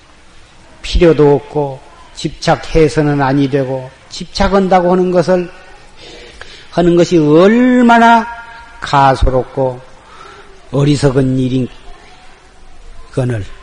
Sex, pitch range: male, 130-180 Hz